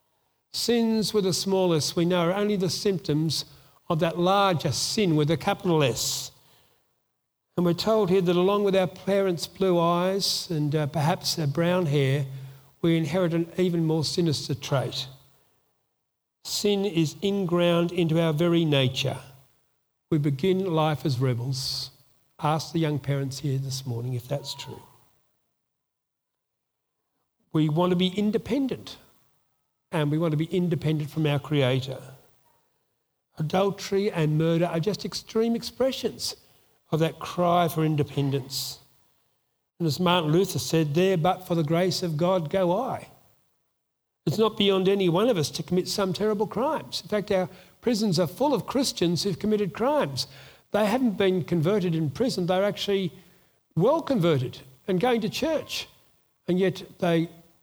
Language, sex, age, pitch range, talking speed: English, male, 50-69, 150-190 Hz, 150 wpm